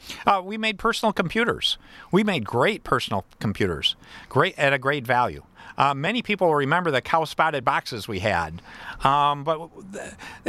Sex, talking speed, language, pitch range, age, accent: male, 155 wpm, English, 150-195 Hz, 50-69, American